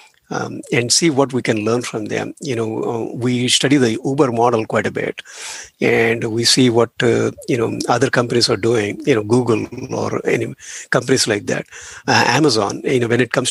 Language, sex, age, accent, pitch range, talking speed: English, male, 50-69, Indian, 115-140 Hz, 205 wpm